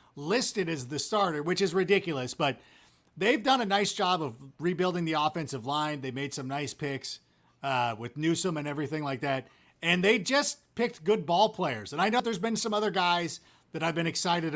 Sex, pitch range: male, 140-190 Hz